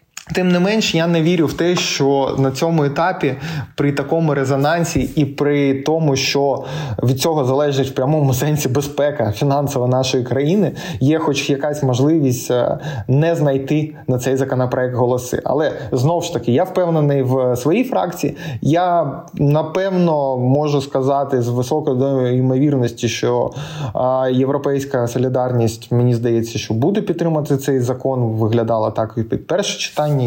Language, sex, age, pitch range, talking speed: Ukrainian, male, 20-39, 130-160 Hz, 140 wpm